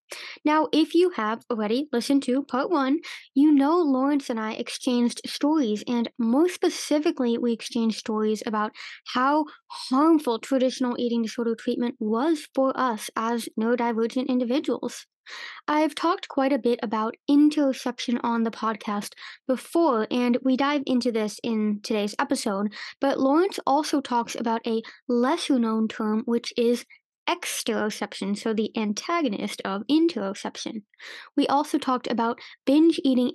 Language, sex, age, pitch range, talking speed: English, female, 10-29, 230-280 Hz, 135 wpm